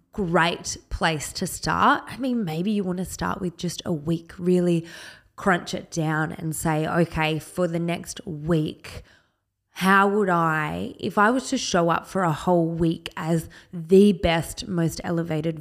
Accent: Australian